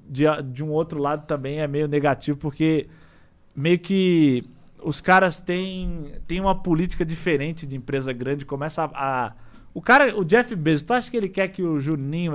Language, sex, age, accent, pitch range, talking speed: Portuguese, male, 20-39, Brazilian, 140-205 Hz, 185 wpm